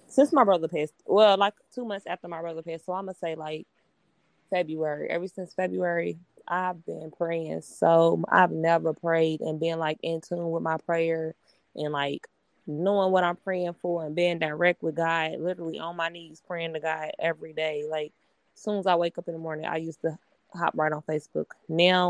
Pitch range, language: 155-180 Hz, English